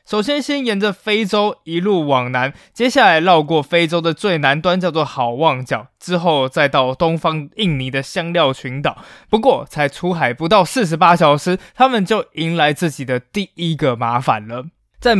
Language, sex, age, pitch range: Chinese, male, 20-39, 160-215 Hz